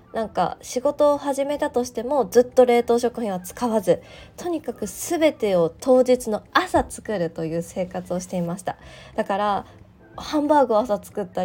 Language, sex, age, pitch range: Japanese, female, 20-39, 185-250 Hz